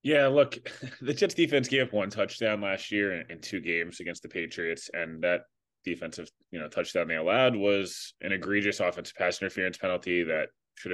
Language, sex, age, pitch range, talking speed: English, male, 20-39, 90-125 Hz, 190 wpm